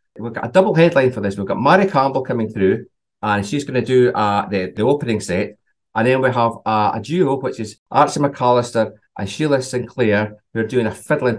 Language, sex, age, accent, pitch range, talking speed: English, male, 40-59, British, 110-140 Hz, 220 wpm